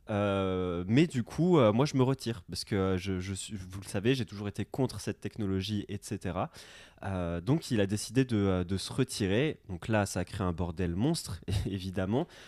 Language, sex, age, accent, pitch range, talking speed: French, male, 20-39, French, 95-115 Hz, 195 wpm